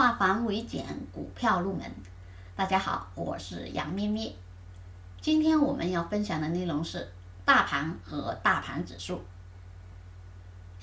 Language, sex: Chinese, female